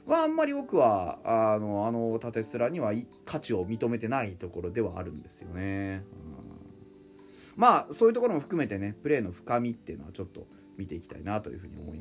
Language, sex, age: Japanese, male, 30-49